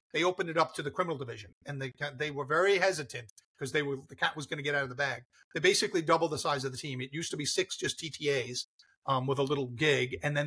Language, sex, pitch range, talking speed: English, male, 130-155 Hz, 280 wpm